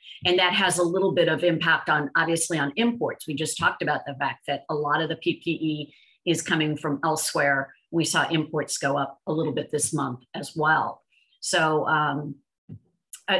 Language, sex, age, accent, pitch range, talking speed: English, female, 50-69, American, 155-180 Hz, 195 wpm